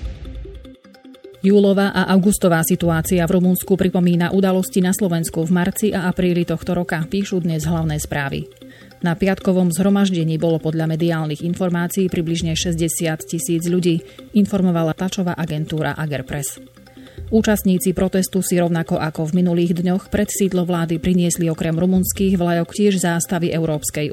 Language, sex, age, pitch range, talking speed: Slovak, female, 30-49, 160-185 Hz, 130 wpm